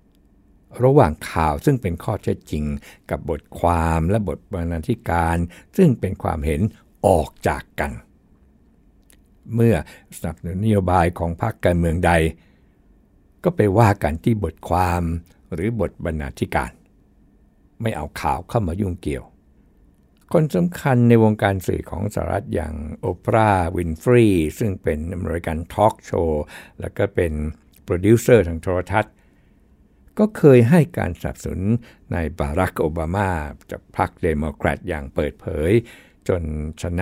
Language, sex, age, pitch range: Thai, male, 60-79, 80-105 Hz